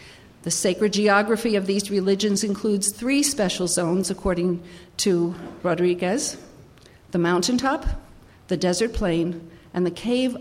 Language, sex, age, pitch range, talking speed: English, female, 50-69, 175-210 Hz, 120 wpm